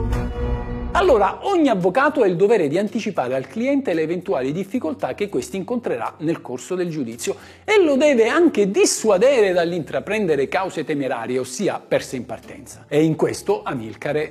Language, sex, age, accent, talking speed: Italian, male, 50-69, native, 150 wpm